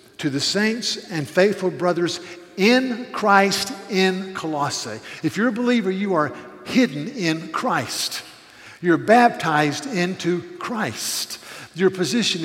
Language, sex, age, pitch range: English, male, 50-69, 145-195 Hz